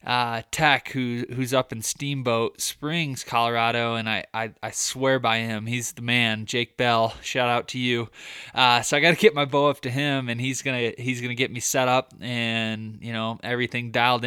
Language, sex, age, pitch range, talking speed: English, male, 20-39, 115-135 Hz, 205 wpm